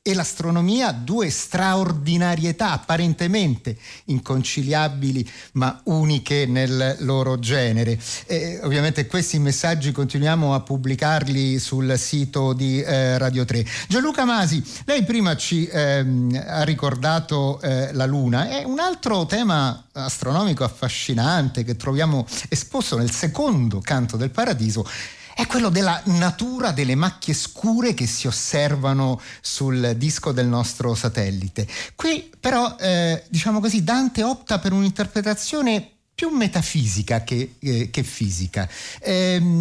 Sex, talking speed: male, 120 wpm